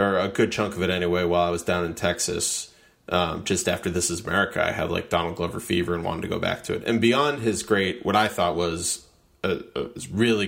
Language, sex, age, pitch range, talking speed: English, male, 30-49, 85-105 Hz, 245 wpm